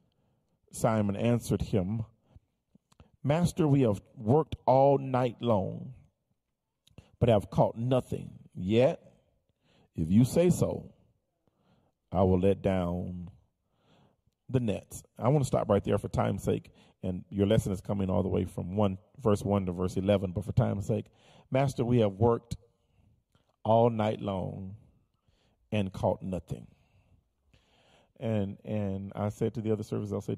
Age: 40-59